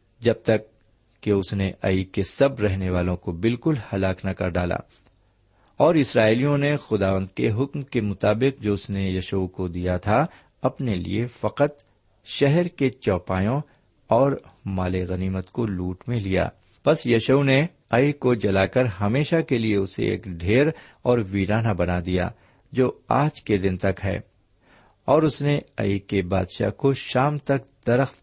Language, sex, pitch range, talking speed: Urdu, male, 95-130 Hz, 165 wpm